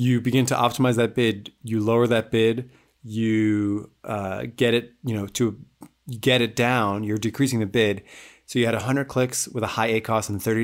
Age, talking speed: 30-49, 195 wpm